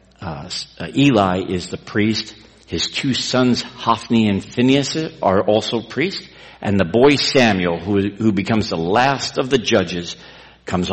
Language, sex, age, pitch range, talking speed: English, male, 60-79, 85-110 Hz, 150 wpm